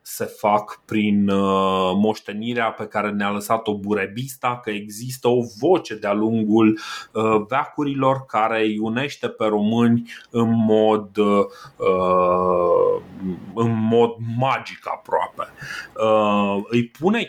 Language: Romanian